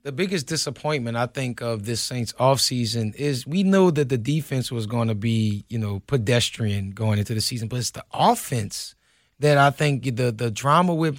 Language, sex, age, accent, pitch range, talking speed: English, male, 20-39, American, 135-195 Hz, 200 wpm